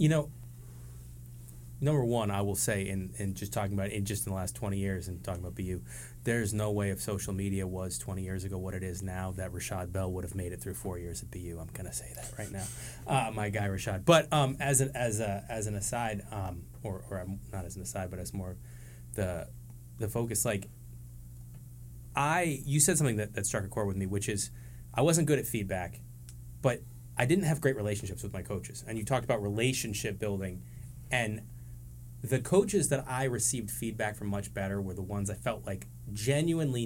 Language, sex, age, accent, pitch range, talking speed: English, male, 20-39, American, 95-120 Hz, 220 wpm